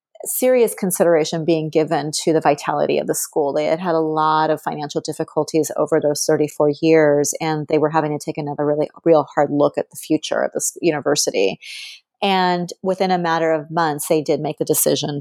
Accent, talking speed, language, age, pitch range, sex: American, 195 wpm, English, 30-49, 155-180 Hz, female